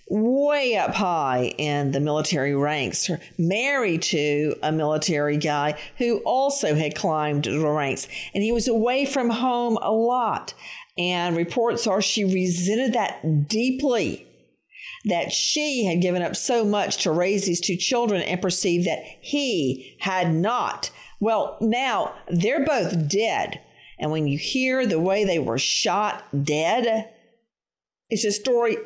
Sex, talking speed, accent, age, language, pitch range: female, 145 wpm, American, 50-69, English, 170-225 Hz